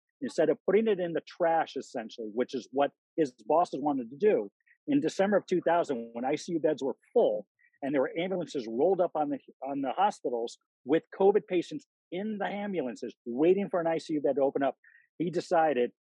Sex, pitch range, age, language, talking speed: male, 135-175 Hz, 40-59, English, 195 wpm